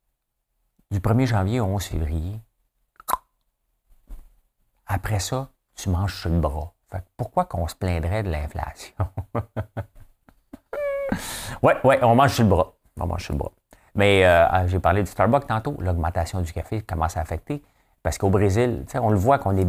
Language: French